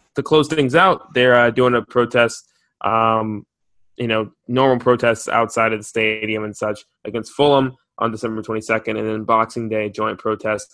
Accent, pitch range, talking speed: American, 110-125 Hz, 175 wpm